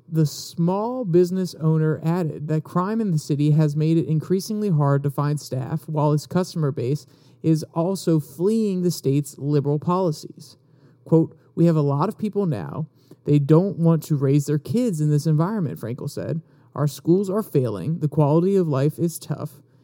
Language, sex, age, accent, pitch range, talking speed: English, male, 30-49, American, 140-170 Hz, 180 wpm